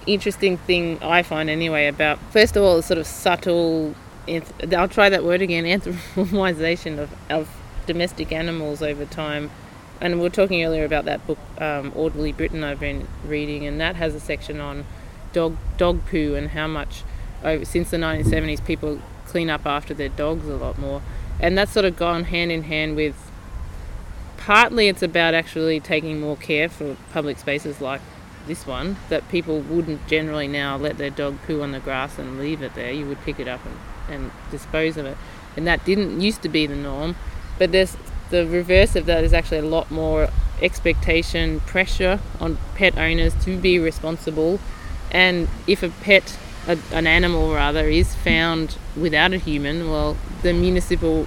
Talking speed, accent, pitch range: 180 wpm, Australian, 145-175 Hz